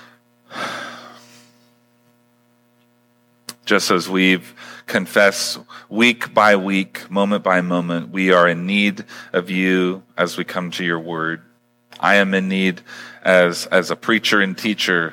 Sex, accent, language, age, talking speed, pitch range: male, American, English, 40-59, 125 wpm, 85-120 Hz